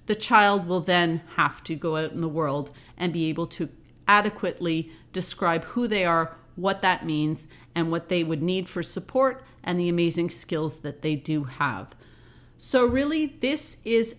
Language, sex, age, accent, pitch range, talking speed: English, female, 40-59, American, 160-200 Hz, 180 wpm